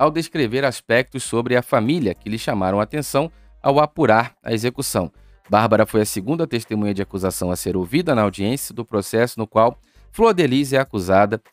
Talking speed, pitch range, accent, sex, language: 175 wpm, 100-135 Hz, Brazilian, male, Portuguese